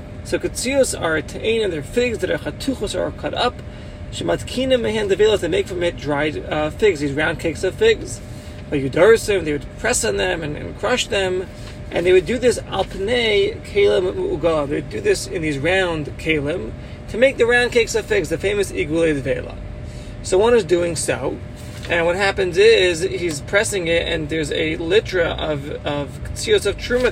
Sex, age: male, 30-49